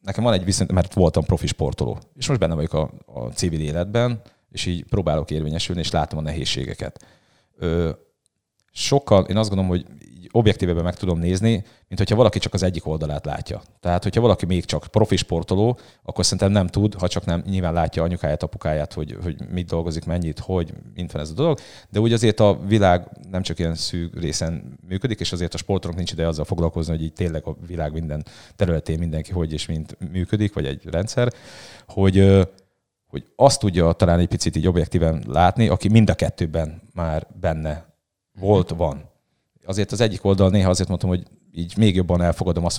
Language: Hungarian